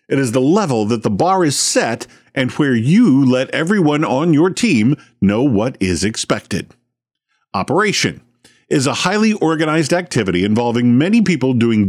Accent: American